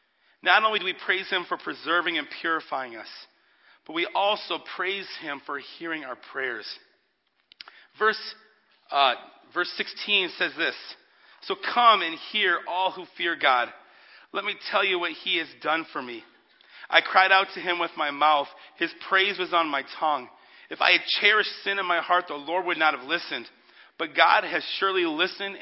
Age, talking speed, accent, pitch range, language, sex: 40-59, 180 wpm, American, 175-225 Hz, English, male